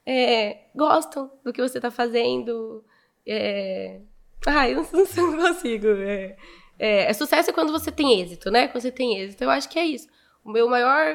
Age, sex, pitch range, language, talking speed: 10-29, female, 220-260 Hz, Portuguese, 180 wpm